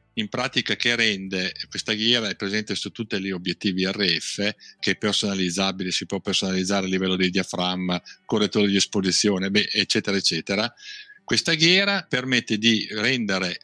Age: 50-69